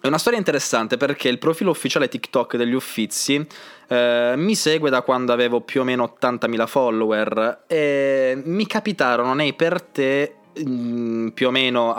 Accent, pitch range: native, 115-150 Hz